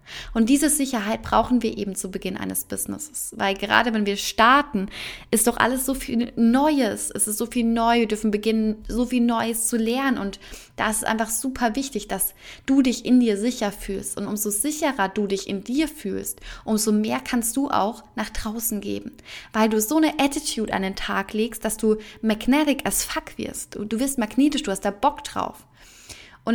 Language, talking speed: German, 200 wpm